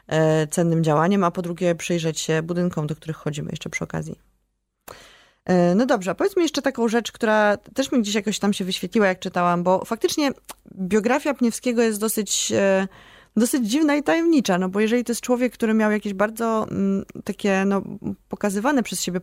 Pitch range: 175-225 Hz